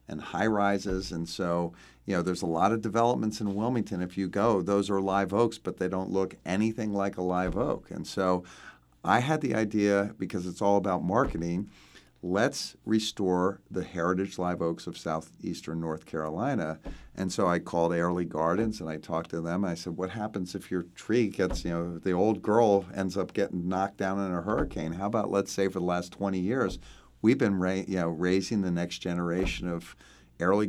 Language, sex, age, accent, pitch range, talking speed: English, male, 50-69, American, 85-100 Hz, 200 wpm